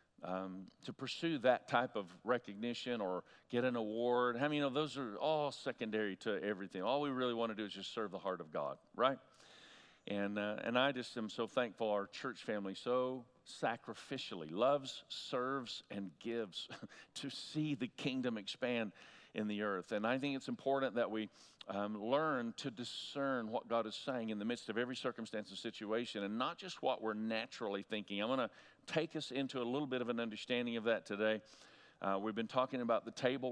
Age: 50-69